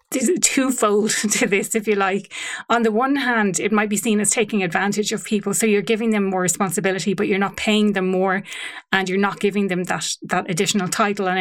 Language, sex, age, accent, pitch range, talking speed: English, female, 30-49, Irish, 190-225 Hz, 225 wpm